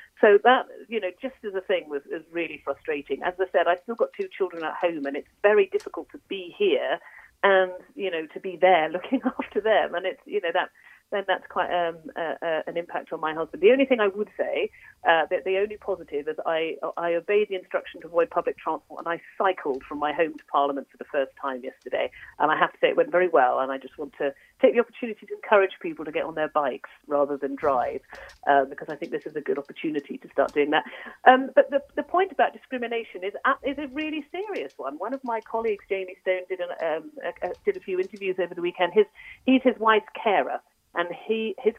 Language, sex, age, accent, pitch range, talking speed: English, female, 40-59, British, 170-260 Hz, 245 wpm